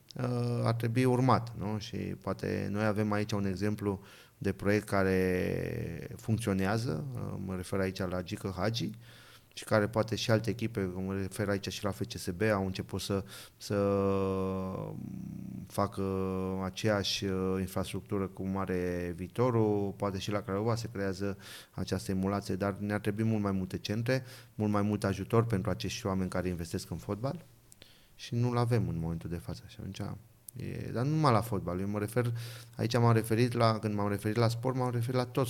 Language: Romanian